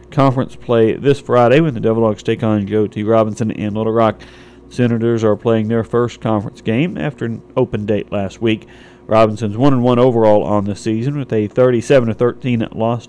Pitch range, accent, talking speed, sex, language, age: 110-125 Hz, American, 195 wpm, male, English, 40-59